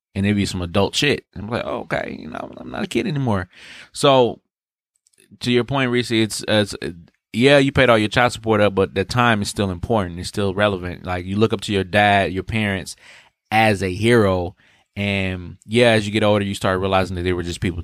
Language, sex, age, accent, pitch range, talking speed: English, male, 20-39, American, 90-105 Hz, 225 wpm